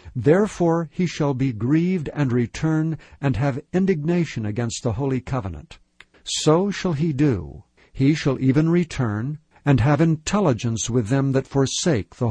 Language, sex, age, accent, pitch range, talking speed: English, male, 60-79, American, 125-155 Hz, 145 wpm